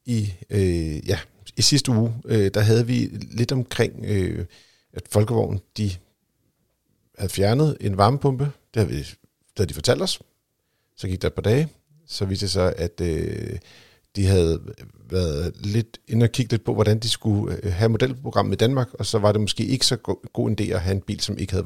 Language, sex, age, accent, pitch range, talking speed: Danish, male, 50-69, native, 100-120 Hz, 195 wpm